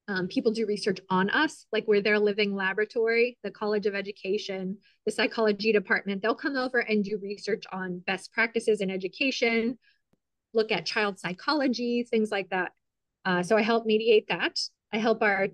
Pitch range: 195-230 Hz